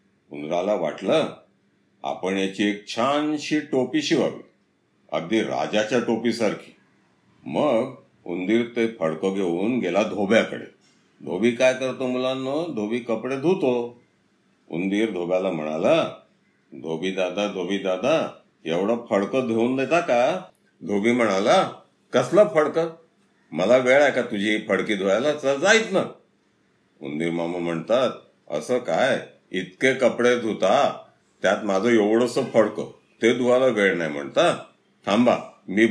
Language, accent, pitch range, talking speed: Marathi, native, 105-135 Hz, 120 wpm